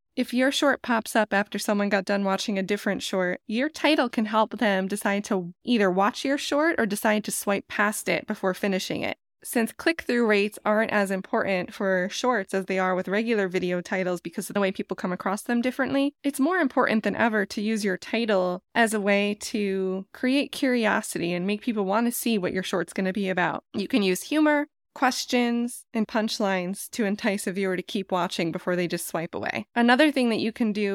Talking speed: 215 wpm